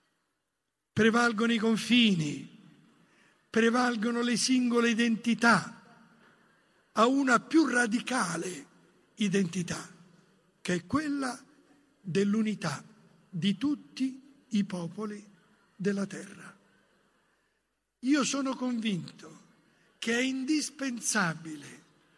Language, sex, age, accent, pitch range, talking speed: Italian, male, 60-79, native, 205-265 Hz, 75 wpm